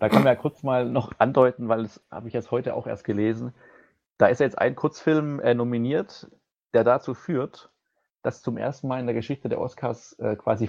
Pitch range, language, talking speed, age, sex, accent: 115-135 Hz, German, 215 wpm, 40-59, male, German